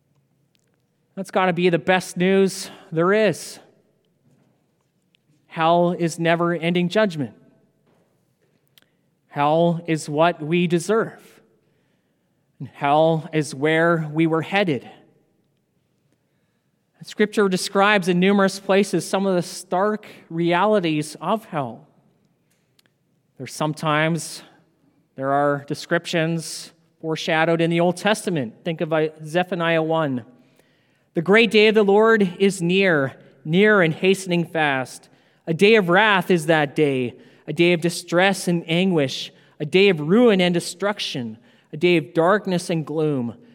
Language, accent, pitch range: English, American, 155-190 Hz